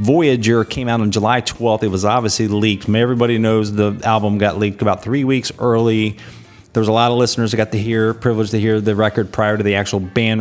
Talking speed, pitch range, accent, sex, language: 225 wpm, 105-115 Hz, American, male, English